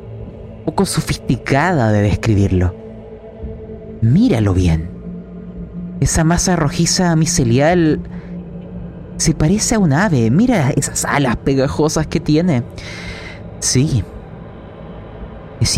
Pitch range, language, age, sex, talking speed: 110-145 Hz, Spanish, 30-49, male, 90 wpm